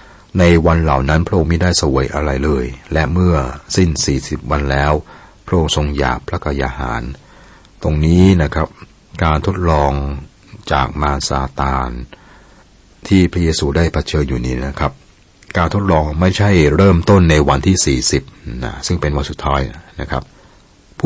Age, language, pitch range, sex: 60-79, Thai, 70-95 Hz, male